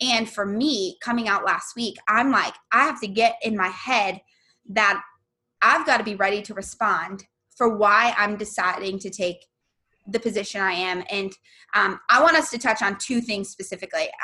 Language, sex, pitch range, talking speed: English, female, 200-260 Hz, 185 wpm